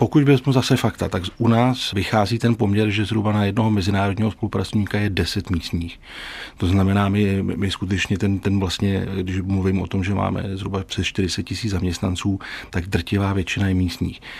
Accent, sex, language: native, male, Czech